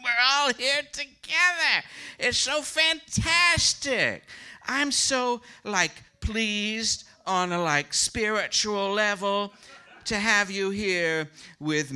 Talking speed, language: 105 wpm, English